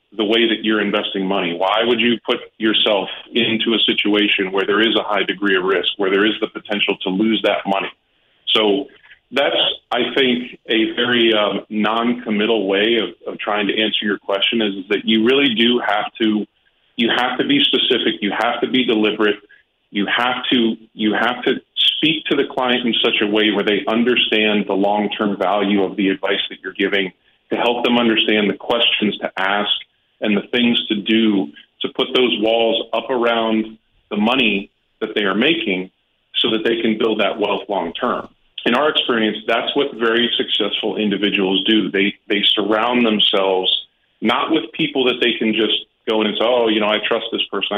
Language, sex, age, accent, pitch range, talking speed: English, male, 30-49, American, 100-115 Hz, 195 wpm